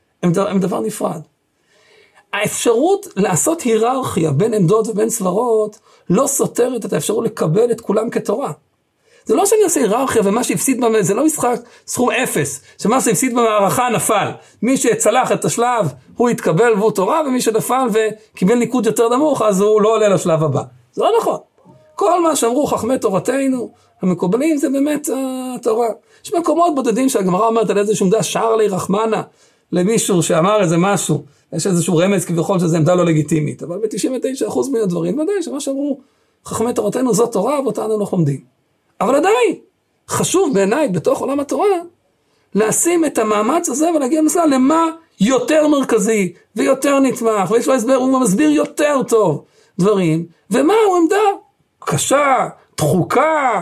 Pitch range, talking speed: 200-295 Hz, 145 wpm